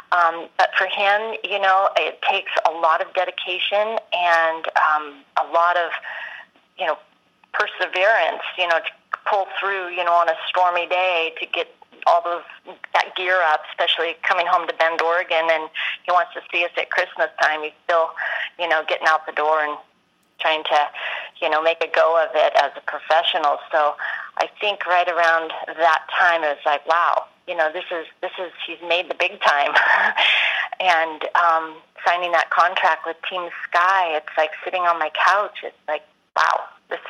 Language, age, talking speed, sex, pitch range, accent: English, 30-49, 185 wpm, female, 155-175 Hz, American